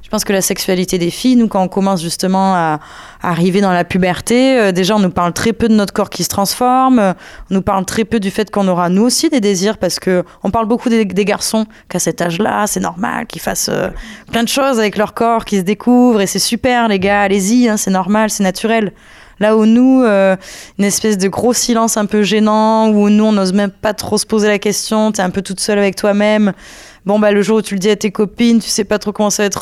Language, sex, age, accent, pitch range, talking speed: French, female, 20-39, French, 185-220 Hz, 265 wpm